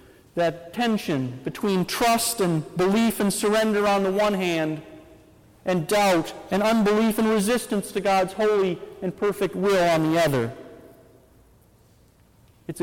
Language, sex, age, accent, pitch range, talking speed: English, male, 40-59, American, 170-225 Hz, 130 wpm